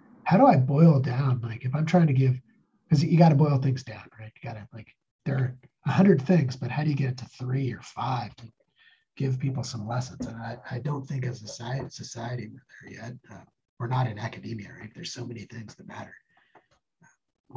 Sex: male